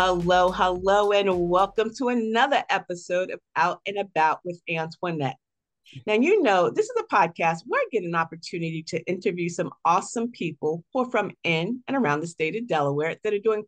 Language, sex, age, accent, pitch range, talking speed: English, female, 50-69, American, 170-230 Hz, 190 wpm